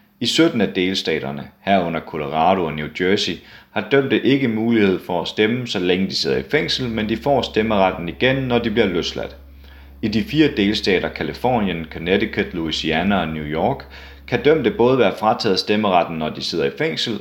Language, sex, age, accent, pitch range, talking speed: Danish, male, 30-49, native, 85-115 Hz, 180 wpm